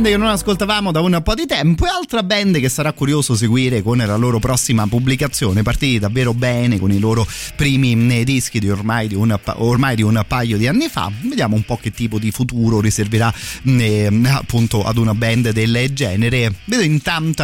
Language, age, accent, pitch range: Italian, 30-49, native, 110-140 Hz